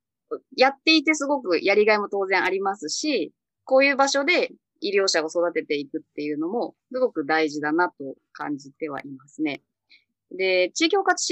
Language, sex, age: Japanese, female, 20-39